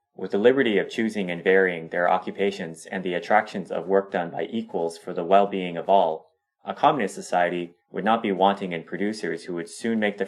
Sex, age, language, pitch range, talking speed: male, 20-39, English, 90-110 Hz, 210 wpm